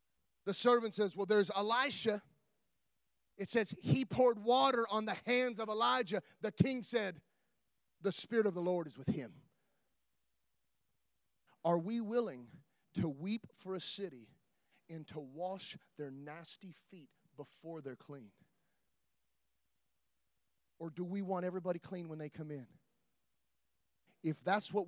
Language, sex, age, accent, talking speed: English, male, 30-49, American, 135 wpm